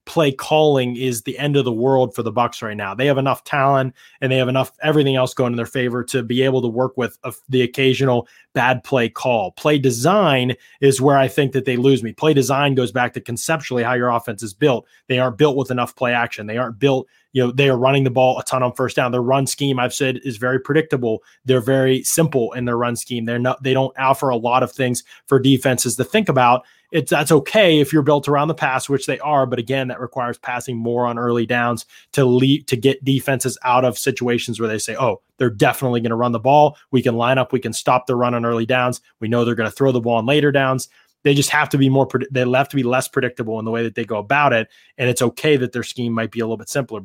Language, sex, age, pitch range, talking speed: English, male, 20-39, 120-135 Hz, 265 wpm